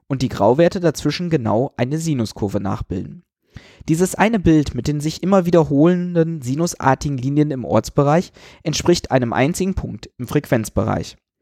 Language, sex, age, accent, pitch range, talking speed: German, male, 20-39, German, 115-155 Hz, 135 wpm